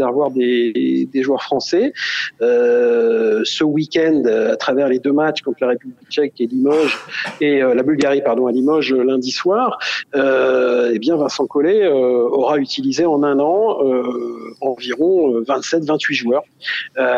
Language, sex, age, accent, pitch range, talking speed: French, male, 50-69, French, 130-190 Hz, 155 wpm